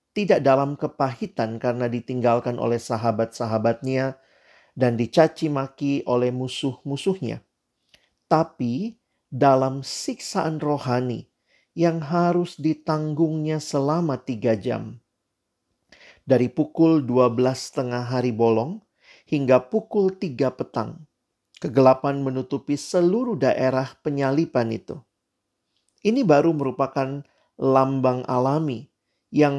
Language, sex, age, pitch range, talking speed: Indonesian, male, 40-59, 125-155 Hz, 90 wpm